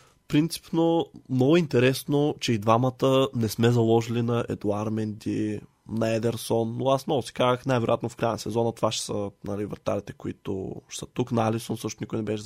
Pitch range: 110-130 Hz